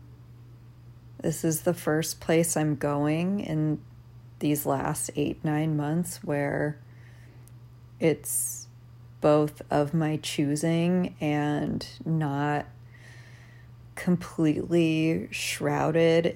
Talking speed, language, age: 85 wpm, English, 30-49